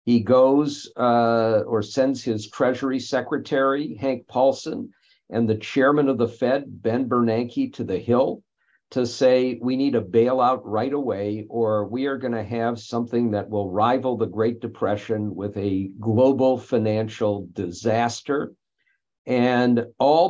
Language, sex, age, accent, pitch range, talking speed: English, male, 50-69, American, 110-135 Hz, 145 wpm